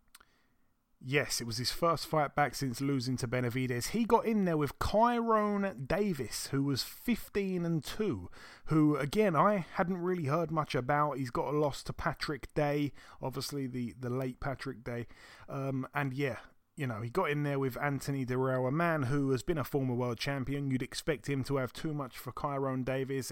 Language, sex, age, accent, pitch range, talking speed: English, male, 30-49, British, 130-160 Hz, 195 wpm